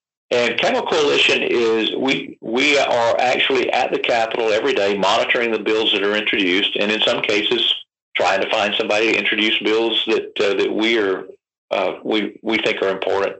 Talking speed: 185 wpm